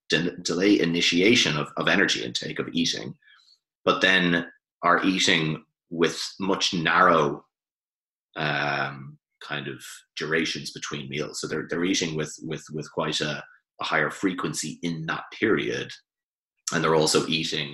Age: 30-49